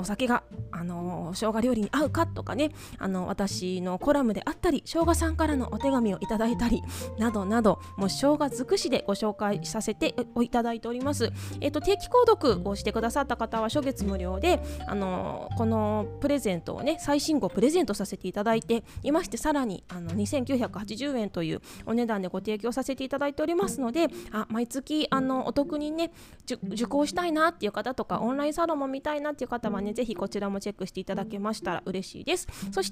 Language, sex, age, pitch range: Japanese, female, 20-39, 205-290 Hz